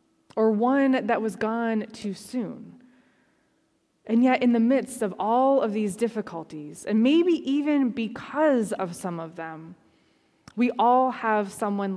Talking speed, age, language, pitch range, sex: 145 wpm, 20-39, English, 205-255 Hz, female